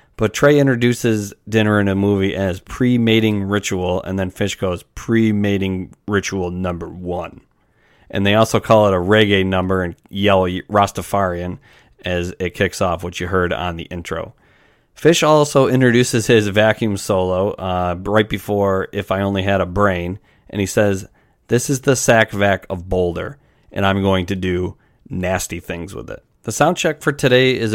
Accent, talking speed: American, 170 wpm